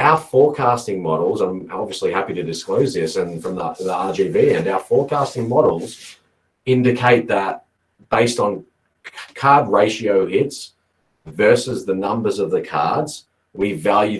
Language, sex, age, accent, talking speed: English, male, 40-59, Australian, 140 wpm